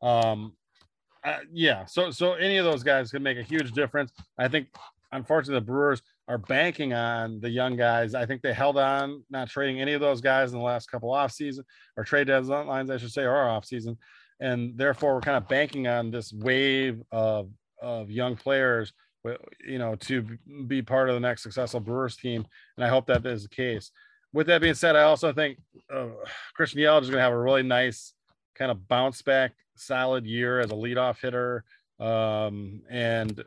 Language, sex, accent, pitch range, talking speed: English, male, American, 115-135 Hz, 200 wpm